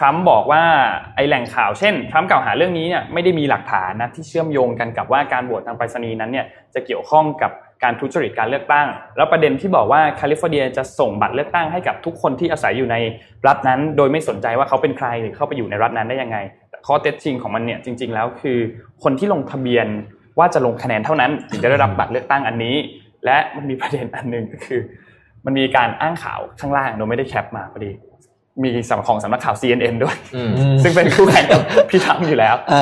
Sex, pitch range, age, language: male, 115-145 Hz, 20-39, Thai